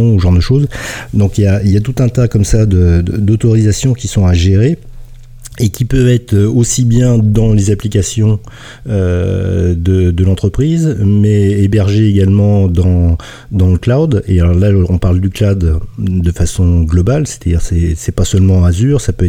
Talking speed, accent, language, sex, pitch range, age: 190 wpm, French, French, male, 90-110 Hz, 40-59